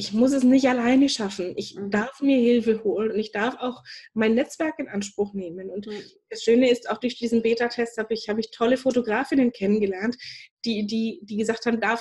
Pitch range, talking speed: 205-245 Hz, 205 wpm